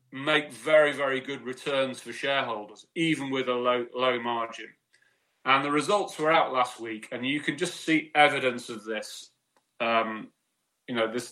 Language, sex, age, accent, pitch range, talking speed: English, male, 30-49, British, 120-155 Hz, 170 wpm